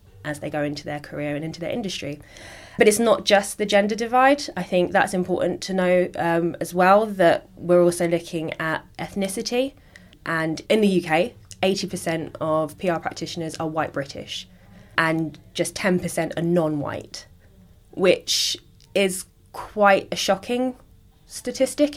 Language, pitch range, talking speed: English, 160-195 Hz, 150 wpm